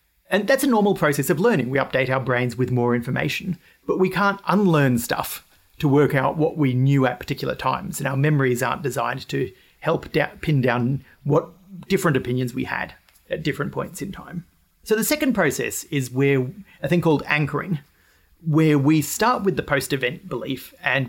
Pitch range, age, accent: 125-170 Hz, 40-59, Australian